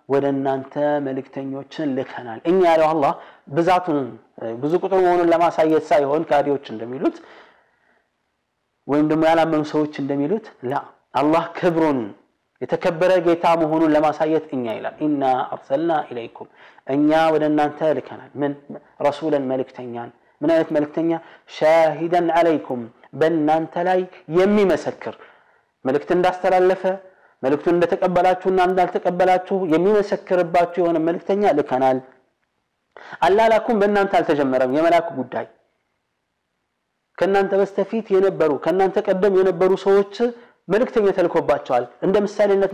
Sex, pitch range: male, 150-195 Hz